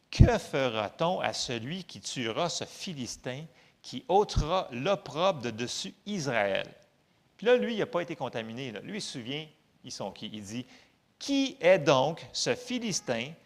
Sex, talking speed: male, 165 wpm